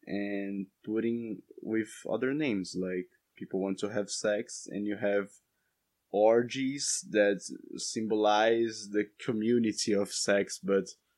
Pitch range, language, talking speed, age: 95-115 Hz, English, 120 wpm, 20-39